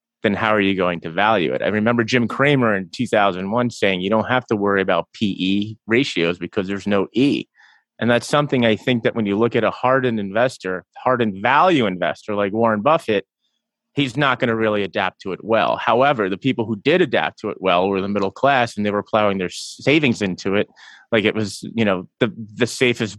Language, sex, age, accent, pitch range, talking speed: English, male, 30-49, American, 100-125 Hz, 215 wpm